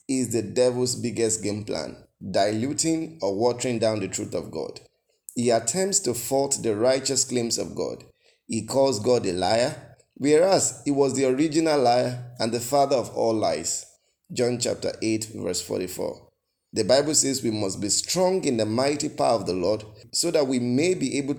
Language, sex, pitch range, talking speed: English, male, 115-145 Hz, 180 wpm